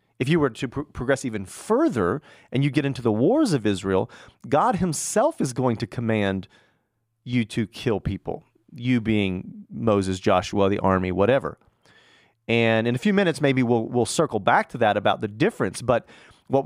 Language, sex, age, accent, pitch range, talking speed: English, male, 40-59, American, 105-135 Hz, 180 wpm